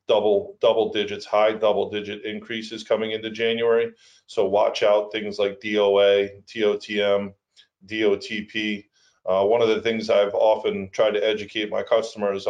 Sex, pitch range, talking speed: male, 100-120 Hz, 145 wpm